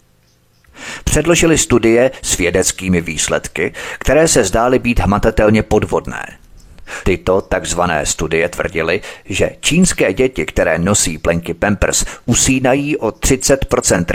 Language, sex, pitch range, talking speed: Czech, male, 95-120 Hz, 105 wpm